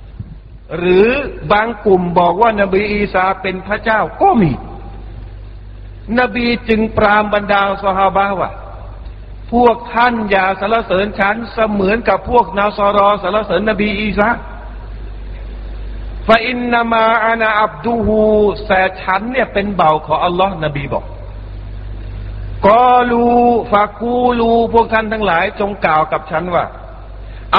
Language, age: Thai, 60-79